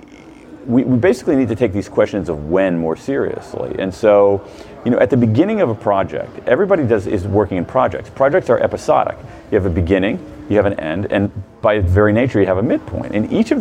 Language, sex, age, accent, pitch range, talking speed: English, male, 40-59, American, 100-120 Hz, 220 wpm